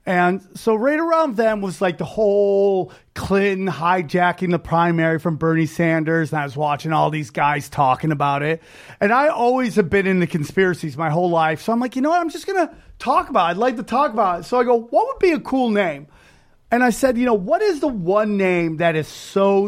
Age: 30-49